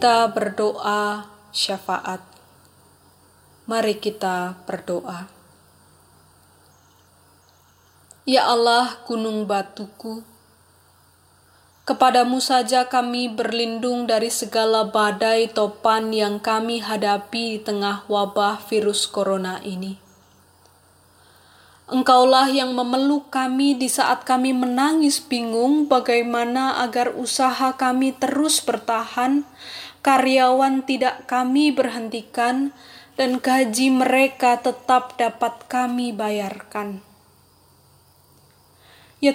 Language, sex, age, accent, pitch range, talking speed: Indonesian, female, 20-39, native, 210-260 Hz, 80 wpm